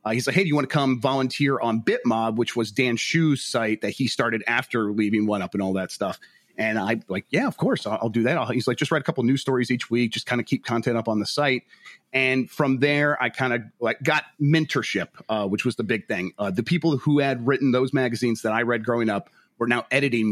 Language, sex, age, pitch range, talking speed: English, male, 30-49, 110-140 Hz, 265 wpm